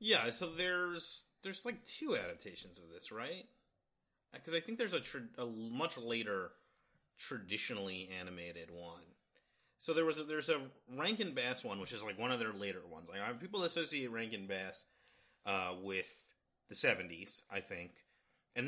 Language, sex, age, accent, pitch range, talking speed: English, male, 30-49, American, 100-160 Hz, 170 wpm